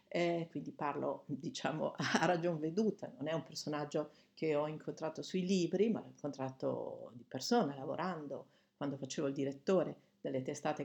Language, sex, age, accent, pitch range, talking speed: Italian, female, 50-69, native, 145-195 Hz, 155 wpm